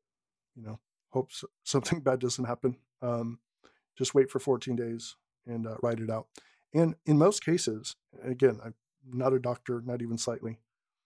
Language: English